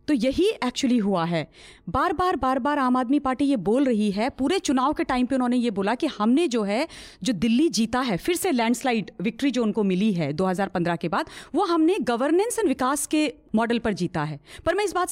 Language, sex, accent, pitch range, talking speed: Hindi, female, native, 225-330 Hz, 225 wpm